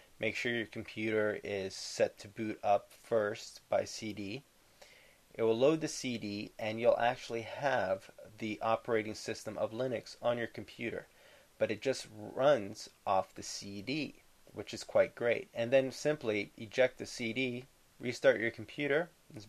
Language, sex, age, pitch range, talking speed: English, male, 30-49, 105-125 Hz, 155 wpm